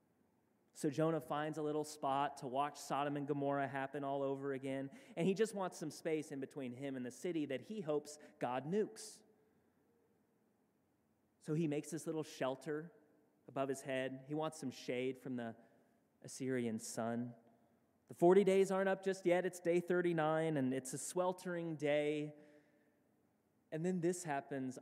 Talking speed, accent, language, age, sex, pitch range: 165 wpm, American, English, 30-49, male, 135-180 Hz